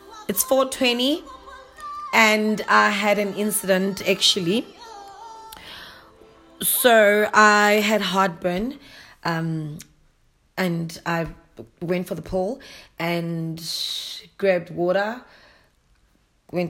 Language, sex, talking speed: English, female, 85 wpm